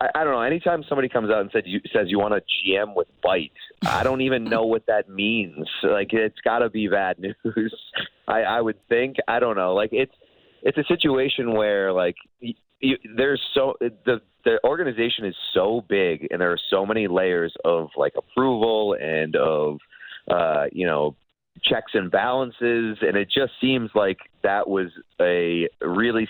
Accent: American